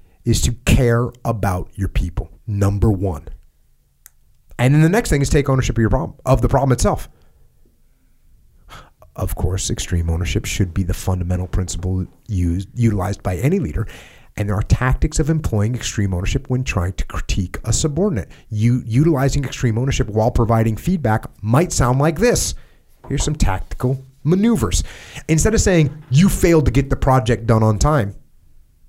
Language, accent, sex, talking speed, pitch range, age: English, American, male, 160 wpm, 95-130 Hz, 30-49